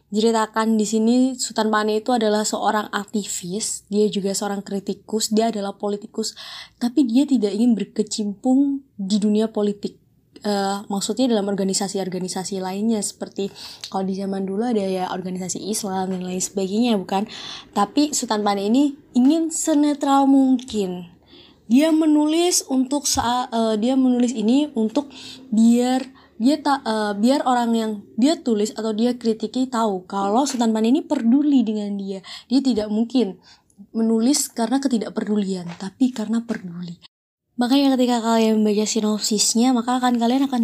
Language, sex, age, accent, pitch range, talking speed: Indonesian, female, 20-39, native, 205-250 Hz, 140 wpm